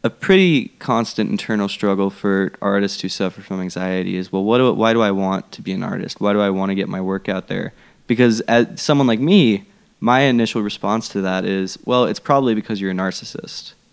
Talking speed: 220 wpm